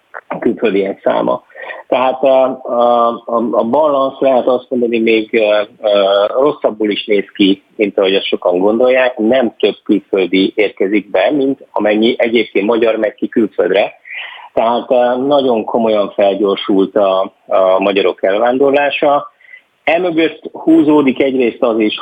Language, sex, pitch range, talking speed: Hungarian, male, 100-125 Hz, 125 wpm